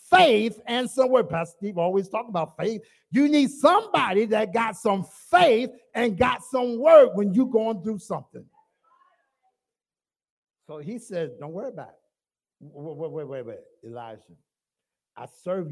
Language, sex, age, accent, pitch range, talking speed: English, male, 50-69, American, 155-260 Hz, 155 wpm